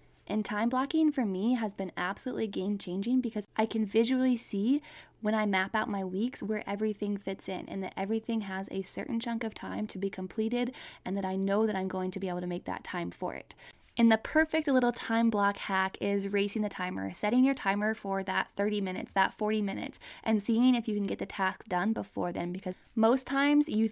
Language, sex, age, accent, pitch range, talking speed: English, female, 20-39, American, 195-230 Hz, 225 wpm